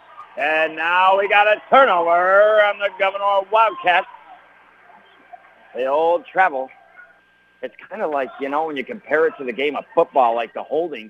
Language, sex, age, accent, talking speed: English, male, 60-79, American, 175 wpm